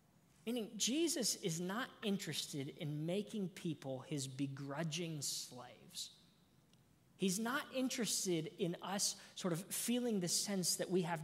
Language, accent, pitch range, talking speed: English, American, 160-235 Hz, 130 wpm